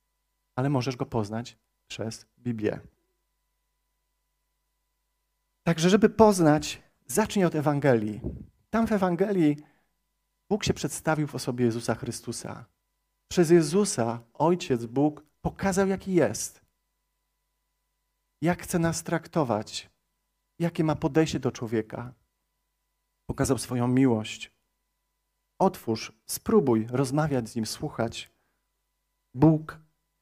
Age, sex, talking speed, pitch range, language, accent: 40-59, male, 95 wpm, 120-165 Hz, Polish, native